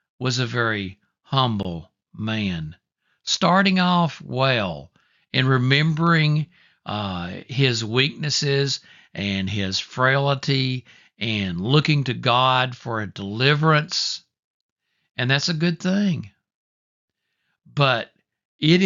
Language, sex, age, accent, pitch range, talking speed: English, male, 60-79, American, 110-165 Hz, 95 wpm